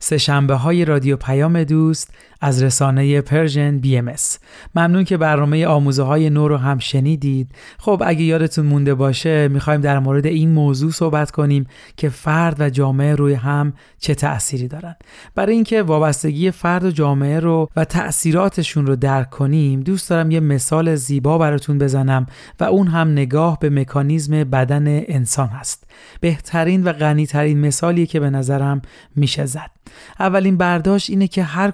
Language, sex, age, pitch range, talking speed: Persian, male, 30-49, 140-170 Hz, 155 wpm